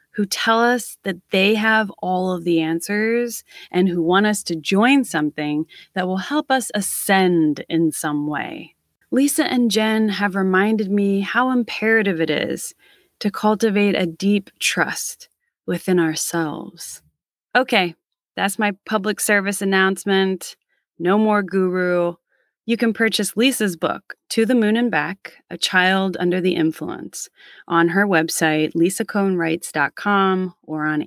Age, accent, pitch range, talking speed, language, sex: 30-49, American, 165-215 Hz, 140 wpm, English, female